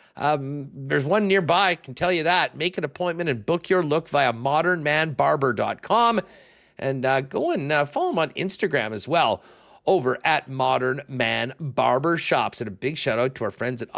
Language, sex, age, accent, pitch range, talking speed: English, male, 50-69, American, 125-175 Hz, 190 wpm